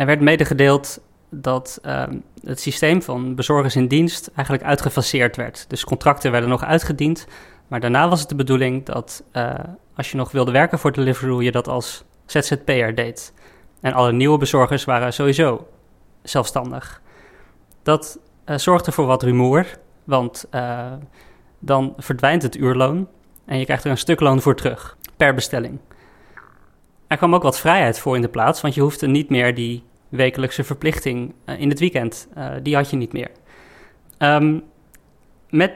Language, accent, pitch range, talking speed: Dutch, Dutch, 125-150 Hz, 160 wpm